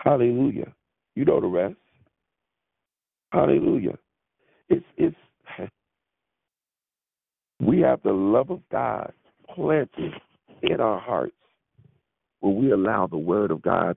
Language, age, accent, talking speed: English, 50-69, American, 100 wpm